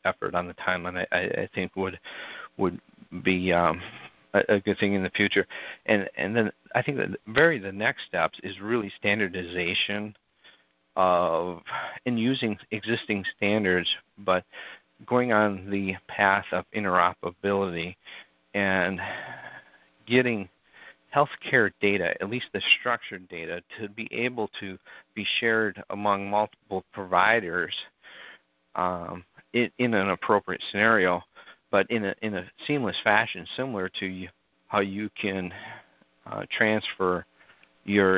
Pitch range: 90-105 Hz